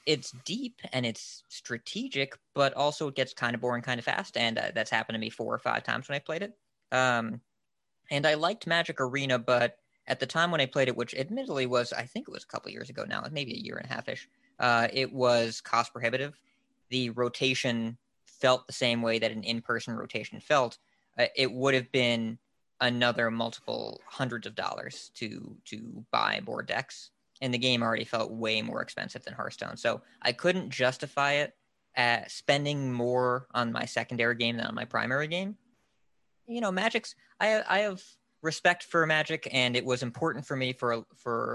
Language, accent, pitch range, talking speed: English, American, 120-150 Hz, 200 wpm